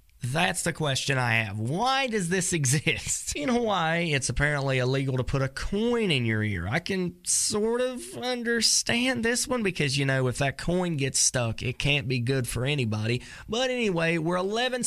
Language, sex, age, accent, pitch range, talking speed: English, male, 20-39, American, 120-185 Hz, 185 wpm